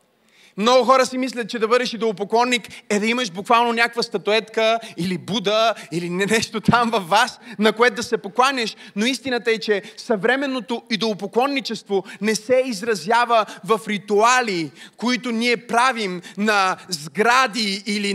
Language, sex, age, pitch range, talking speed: Bulgarian, male, 30-49, 210-250 Hz, 140 wpm